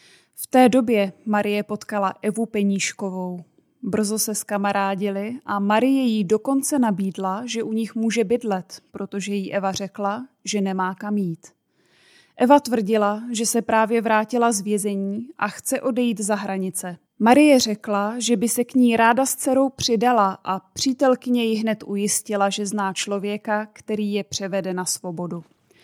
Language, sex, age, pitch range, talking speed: Czech, female, 20-39, 200-230 Hz, 155 wpm